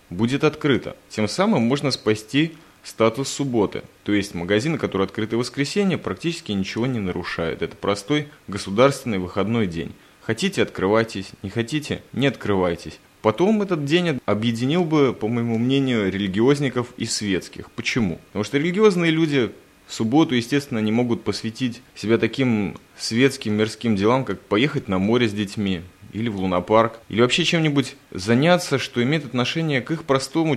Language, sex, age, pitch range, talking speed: Russian, male, 20-39, 100-140 Hz, 150 wpm